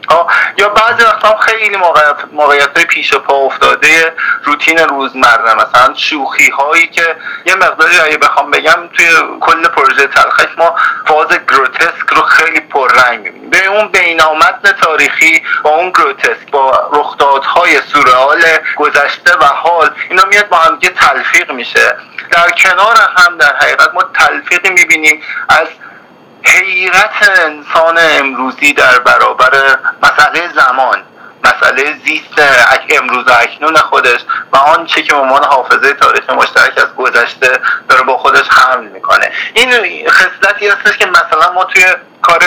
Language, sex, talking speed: Persian, male, 135 wpm